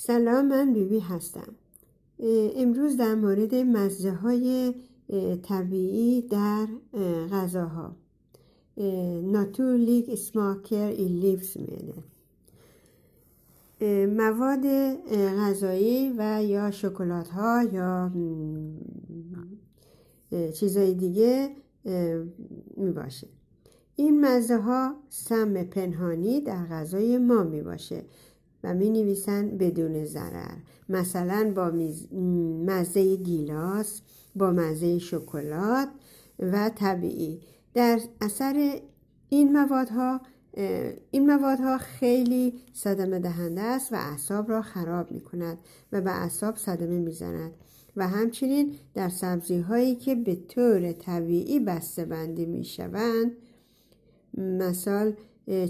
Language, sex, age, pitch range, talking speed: Persian, female, 60-79, 180-235 Hz, 95 wpm